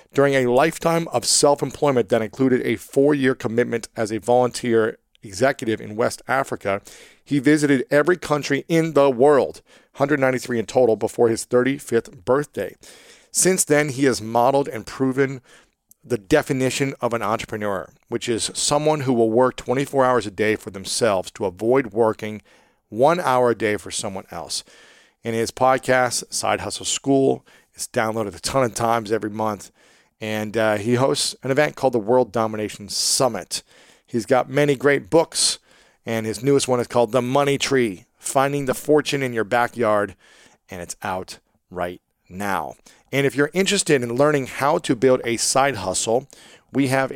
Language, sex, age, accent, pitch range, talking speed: English, male, 40-59, American, 110-140 Hz, 165 wpm